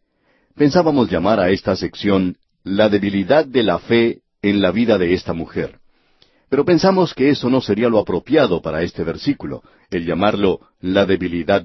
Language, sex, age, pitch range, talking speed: Spanish, male, 50-69, 95-135 Hz, 160 wpm